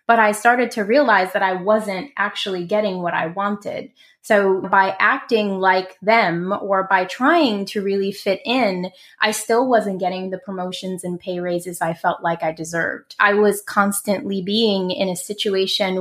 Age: 20-39